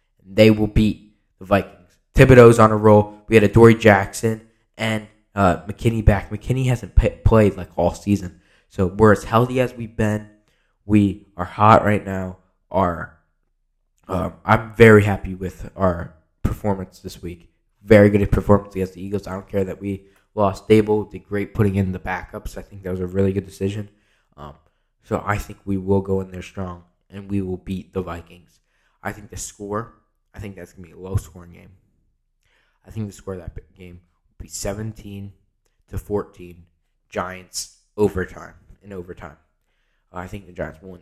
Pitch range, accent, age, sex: 90-105 Hz, American, 10-29, male